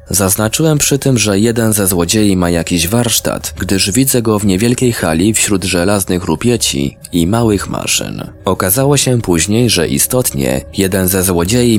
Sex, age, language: male, 20-39, Polish